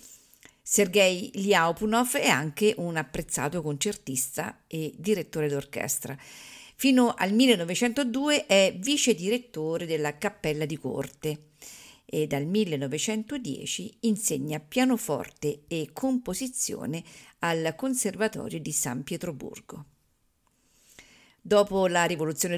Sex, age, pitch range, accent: female, 50-69, 155-215 Hz, native